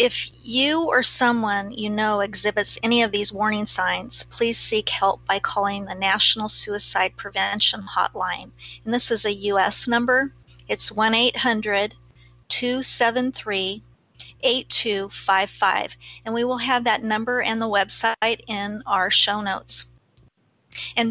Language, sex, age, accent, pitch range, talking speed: English, female, 40-59, American, 195-240 Hz, 125 wpm